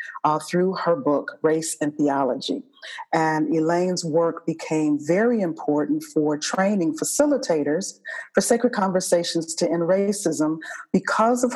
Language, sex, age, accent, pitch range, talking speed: English, female, 40-59, American, 155-215 Hz, 125 wpm